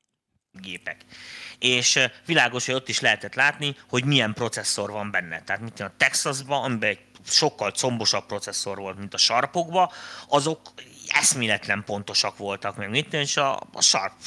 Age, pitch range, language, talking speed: 30-49, 110-135 Hz, Hungarian, 145 wpm